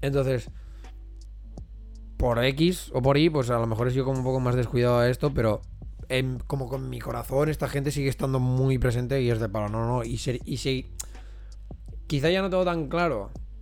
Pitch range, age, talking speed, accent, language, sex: 110-130 Hz, 20-39, 205 wpm, Spanish, Spanish, male